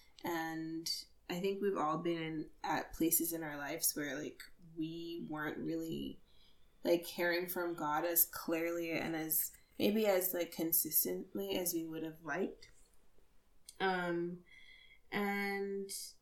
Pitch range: 160-200 Hz